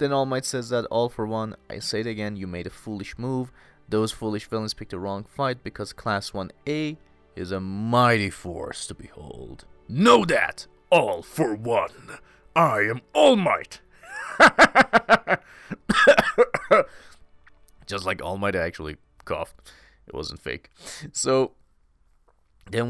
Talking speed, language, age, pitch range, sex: 140 wpm, English, 30-49, 95-135 Hz, male